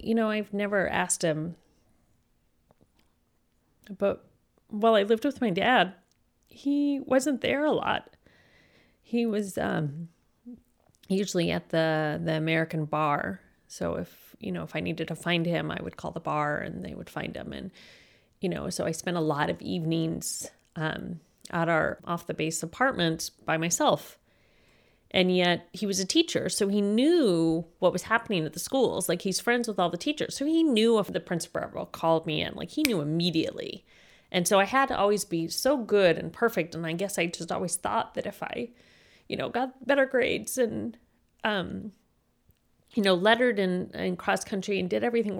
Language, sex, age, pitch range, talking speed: English, female, 30-49, 170-250 Hz, 180 wpm